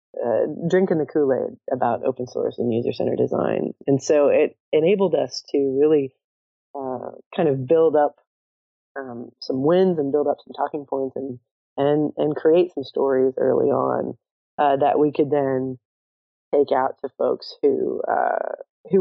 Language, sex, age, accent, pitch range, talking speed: English, female, 30-49, American, 130-165 Hz, 165 wpm